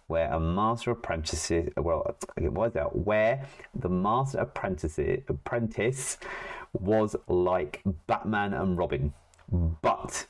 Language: English